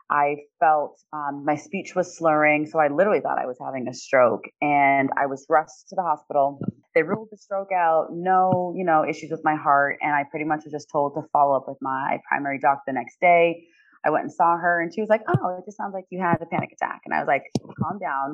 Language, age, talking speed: English, 30-49, 250 wpm